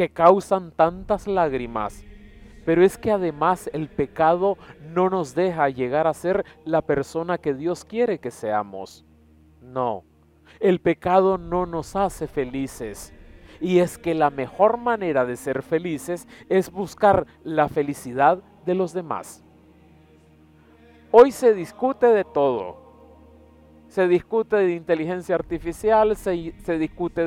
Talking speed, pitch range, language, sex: 130 wpm, 135-190 Hz, Spanish, male